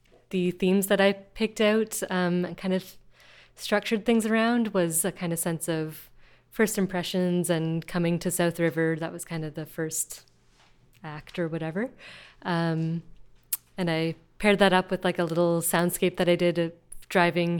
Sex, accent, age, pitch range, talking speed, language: female, American, 20-39, 165-195 Hz, 175 wpm, English